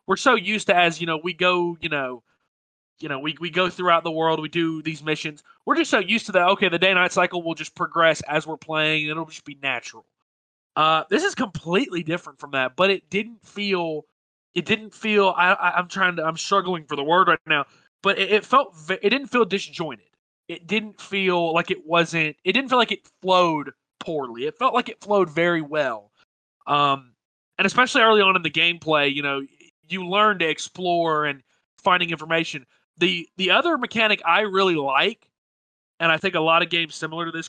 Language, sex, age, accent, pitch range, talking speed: English, male, 20-39, American, 155-200 Hz, 215 wpm